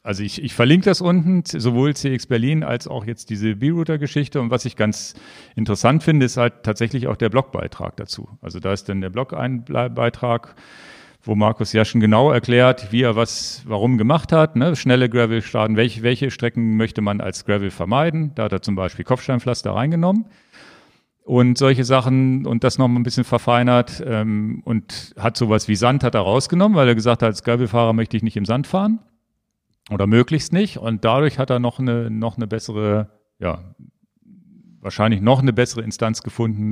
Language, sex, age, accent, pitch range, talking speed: German, male, 40-59, German, 110-130 Hz, 185 wpm